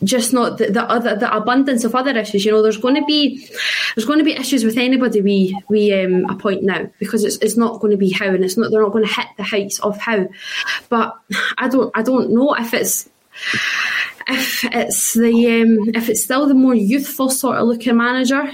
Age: 20-39